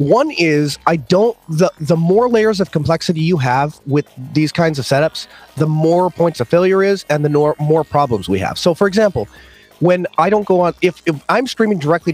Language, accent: English, American